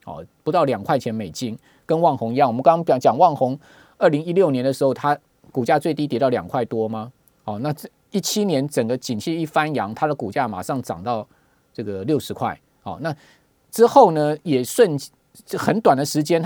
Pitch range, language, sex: 120-155 Hz, Chinese, male